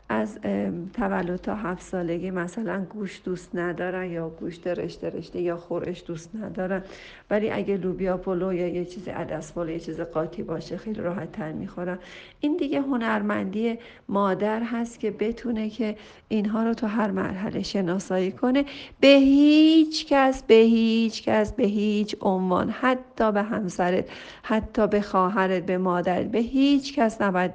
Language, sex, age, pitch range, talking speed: Persian, female, 50-69, 180-220 Hz, 150 wpm